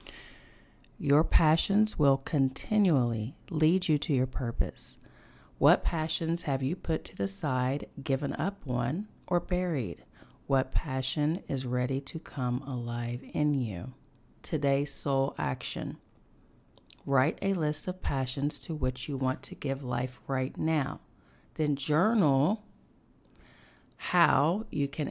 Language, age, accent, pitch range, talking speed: English, 40-59, American, 130-160 Hz, 125 wpm